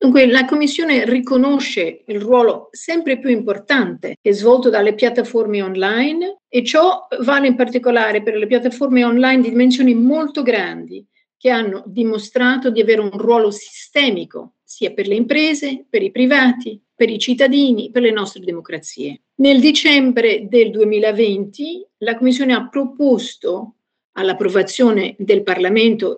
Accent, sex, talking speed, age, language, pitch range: native, female, 140 wpm, 50-69, Italian, 215-280 Hz